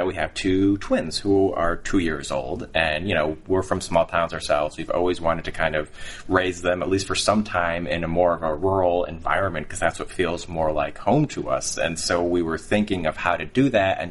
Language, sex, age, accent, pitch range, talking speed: English, male, 20-39, American, 80-100 Hz, 240 wpm